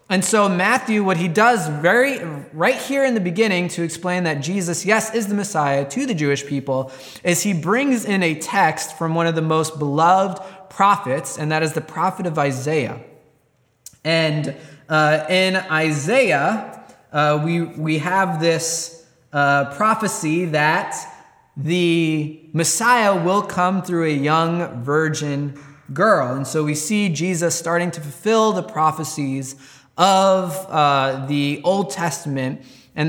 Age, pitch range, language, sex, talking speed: 20-39, 145-195 Hz, English, male, 145 wpm